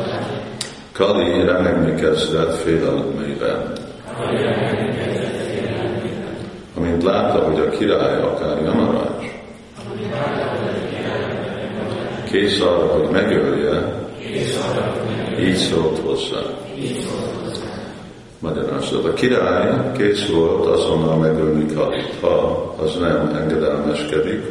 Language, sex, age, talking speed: Hungarian, male, 50-69, 75 wpm